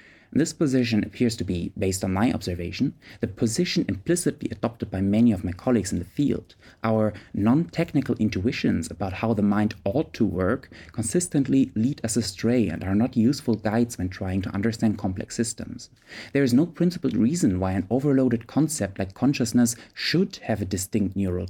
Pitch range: 100-125 Hz